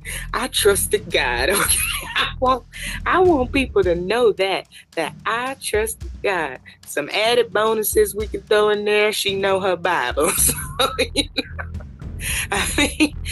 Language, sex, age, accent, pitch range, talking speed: English, female, 20-39, American, 155-245 Hz, 120 wpm